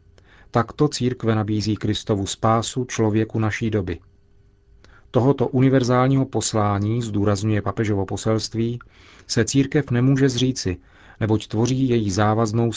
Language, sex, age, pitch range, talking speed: Czech, male, 40-59, 105-125 Hz, 105 wpm